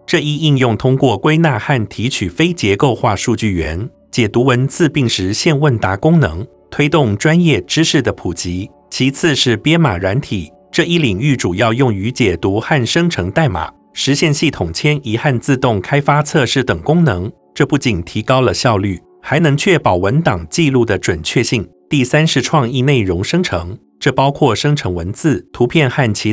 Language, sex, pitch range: Chinese, male, 110-155 Hz